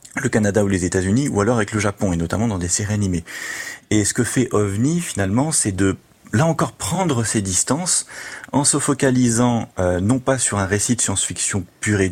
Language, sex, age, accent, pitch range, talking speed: French, male, 30-49, French, 95-125 Hz, 215 wpm